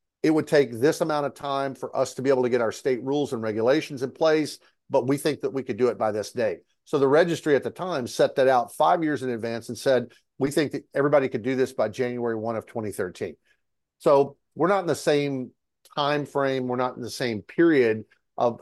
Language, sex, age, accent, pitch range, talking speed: English, male, 50-69, American, 125-145 Hz, 240 wpm